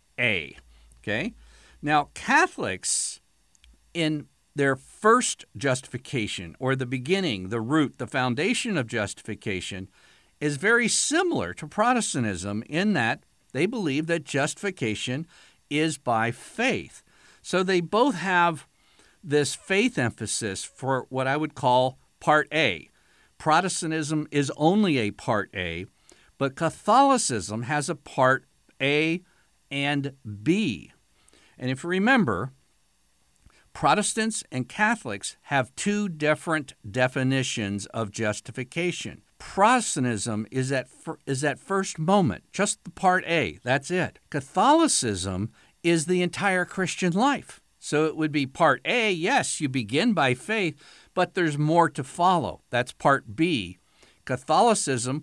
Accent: American